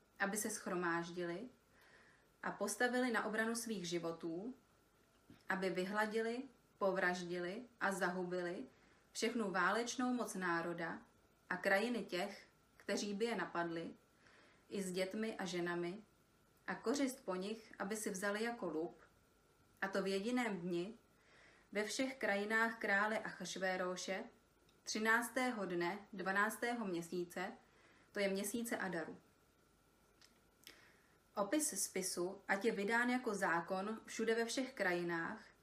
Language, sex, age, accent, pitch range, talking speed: Czech, female, 30-49, native, 180-225 Hz, 115 wpm